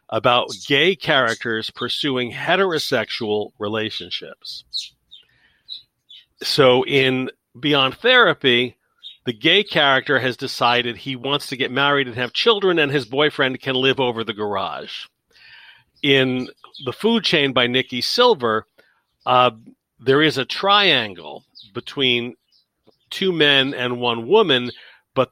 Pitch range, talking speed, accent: 125-160 Hz, 120 wpm, American